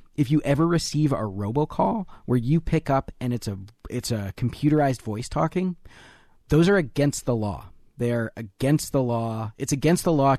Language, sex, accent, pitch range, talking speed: English, male, American, 110-145 Hz, 180 wpm